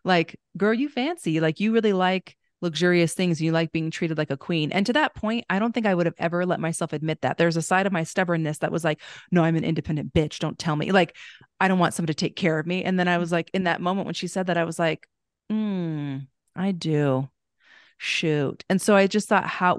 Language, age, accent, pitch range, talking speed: English, 30-49, American, 160-190 Hz, 255 wpm